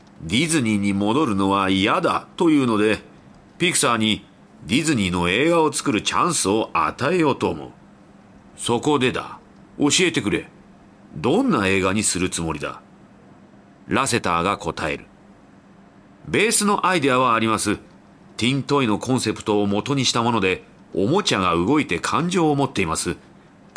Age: 40-59